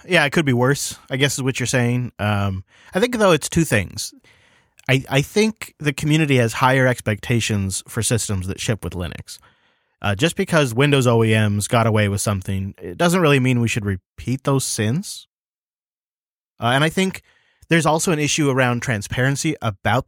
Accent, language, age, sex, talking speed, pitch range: American, English, 30-49, male, 180 wpm, 115-145 Hz